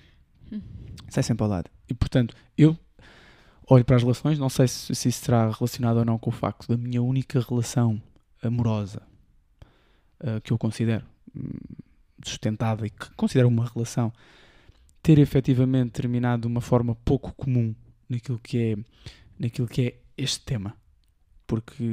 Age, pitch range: 20-39, 110-130 Hz